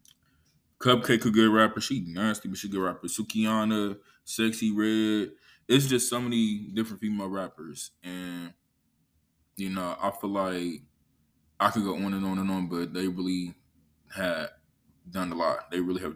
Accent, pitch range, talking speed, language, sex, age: American, 95-115 Hz, 170 wpm, English, male, 20-39